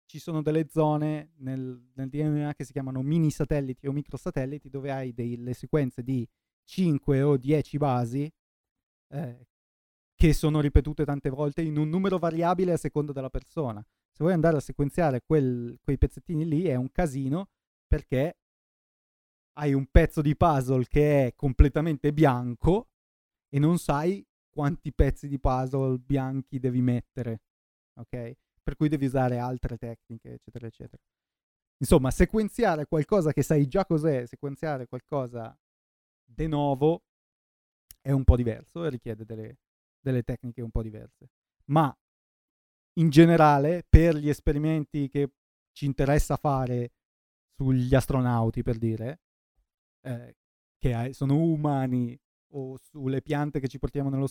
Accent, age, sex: native, 30-49, male